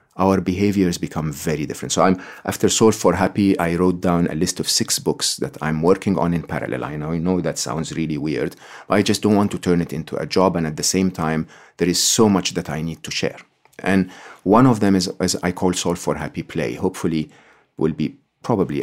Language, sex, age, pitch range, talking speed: English, male, 40-59, 85-110 Hz, 225 wpm